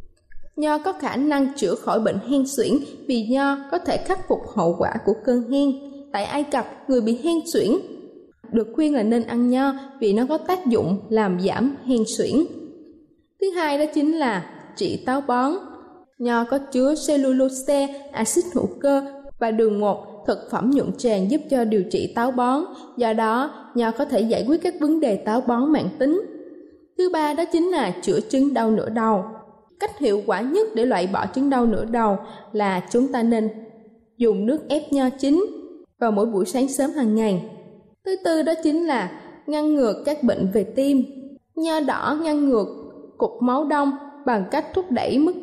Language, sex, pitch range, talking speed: Vietnamese, female, 230-305 Hz, 190 wpm